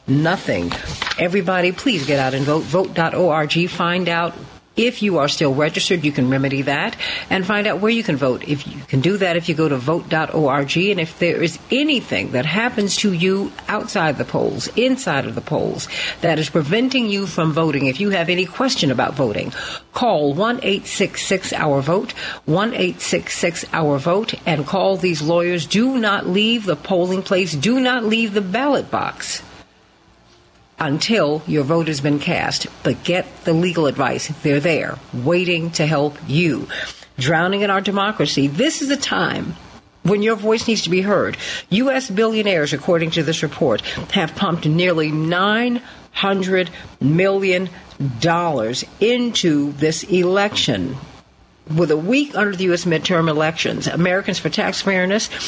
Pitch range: 155-200 Hz